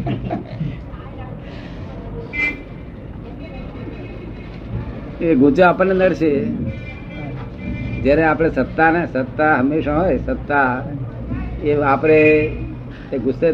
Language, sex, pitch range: Gujarati, male, 130-155 Hz